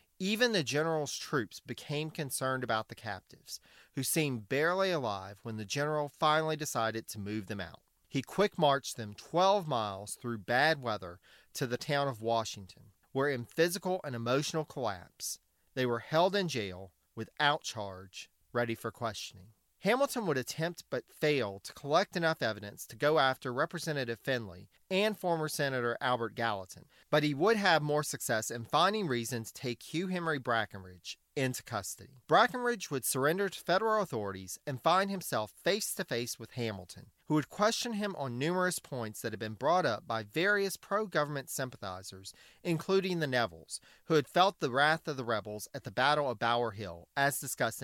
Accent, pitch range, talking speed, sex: American, 110-160 Hz, 170 wpm, male